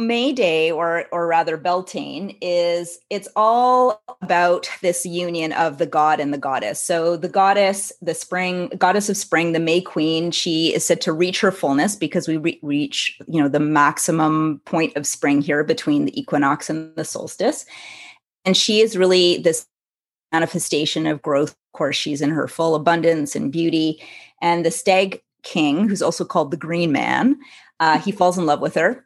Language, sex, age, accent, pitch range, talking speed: English, female, 30-49, American, 155-180 Hz, 180 wpm